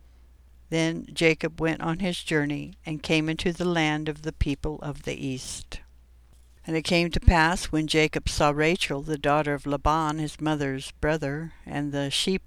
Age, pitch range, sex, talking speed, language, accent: 60-79, 140-170 Hz, female, 175 wpm, English, American